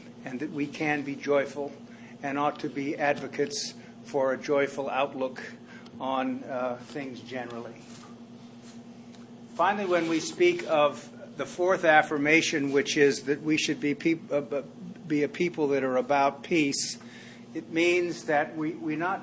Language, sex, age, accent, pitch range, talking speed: English, male, 50-69, American, 135-170 Hz, 150 wpm